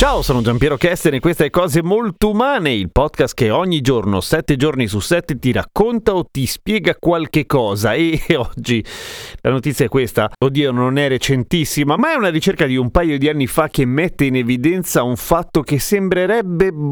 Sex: male